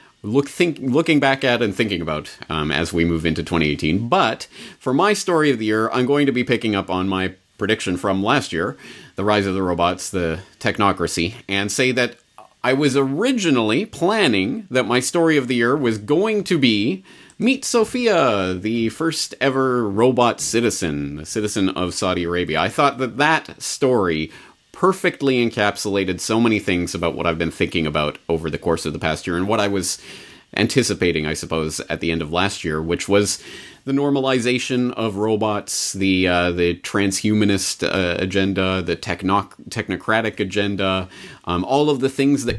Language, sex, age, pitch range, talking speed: English, male, 30-49, 90-130 Hz, 180 wpm